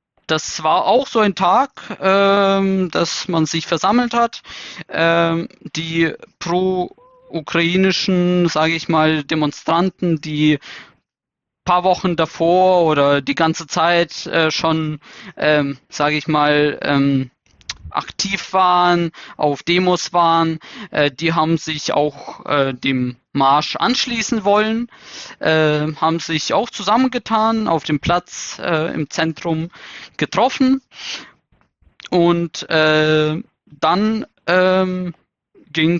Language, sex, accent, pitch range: German, male, German, 155-190 Hz